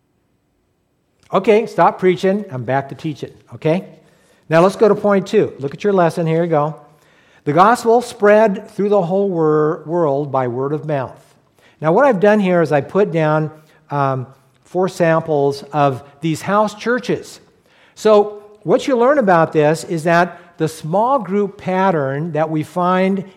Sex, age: male, 60-79